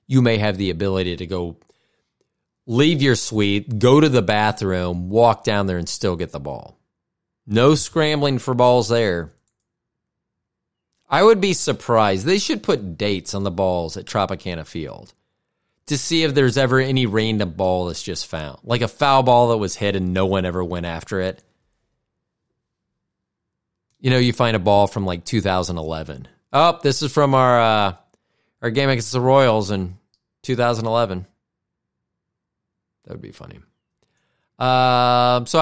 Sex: male